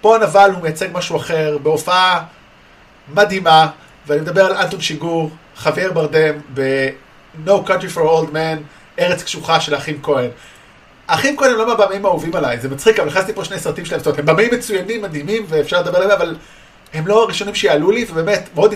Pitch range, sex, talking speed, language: 155-200 Hz, male, 180 wpm, Hebrew